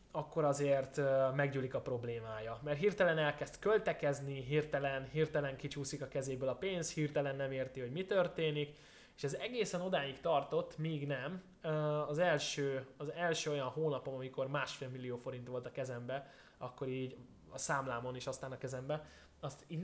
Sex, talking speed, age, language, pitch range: male, 155 wpm, 20-39, Hungarian, 130-155 Hz